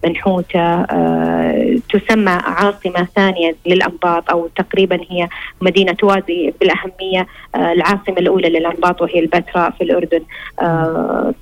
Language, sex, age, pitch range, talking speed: Arabic, female, 20-39, 170-200 Hz, 110 wpm